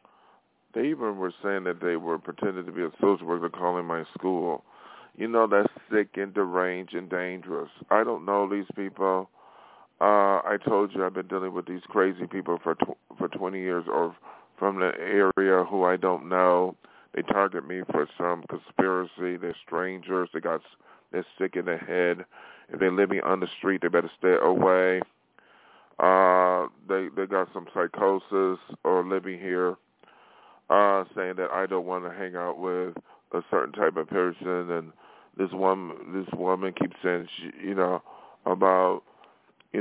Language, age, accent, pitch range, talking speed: English, 40-59, American, 90-95 Hz, 175 wpm